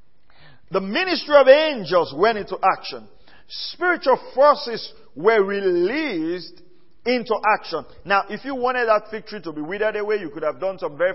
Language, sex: English, male